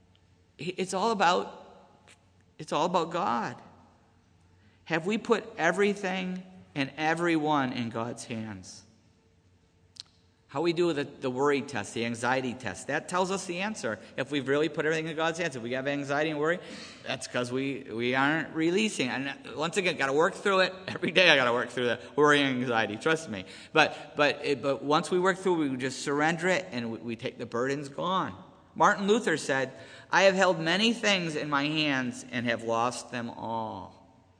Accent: American